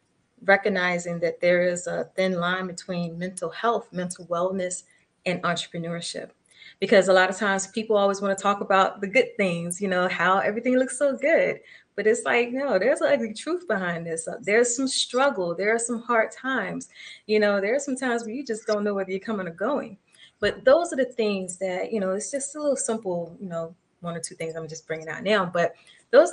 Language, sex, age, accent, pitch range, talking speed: English, female, 20-39, American, 175-220 Hz, 215 wpm